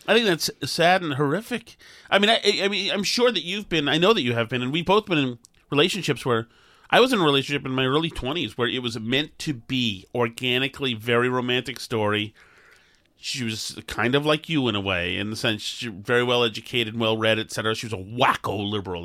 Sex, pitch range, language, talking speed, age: male, 120-150 Hz, English, 225 wpm, 30-49